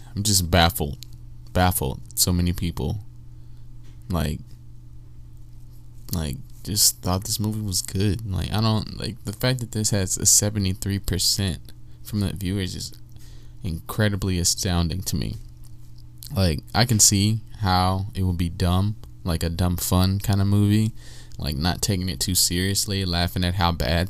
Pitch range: 85-105 Hz